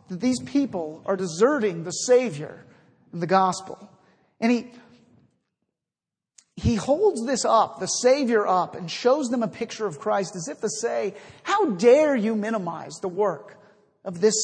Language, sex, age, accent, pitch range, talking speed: English, male, 50-69, American, 185-250 Hz, 160 wpm